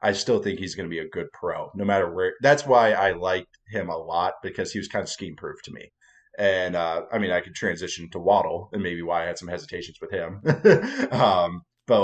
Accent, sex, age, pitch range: American, male, 20-39, 95-130 Hz